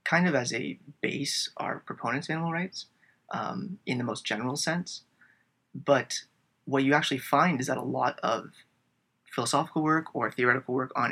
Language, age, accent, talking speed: English, 20-39, American, 175 wpm